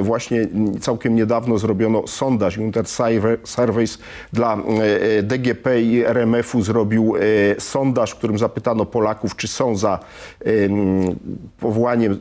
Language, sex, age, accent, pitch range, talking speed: Polish, male, 40-59, native, 110-130 Hz, 105 wpm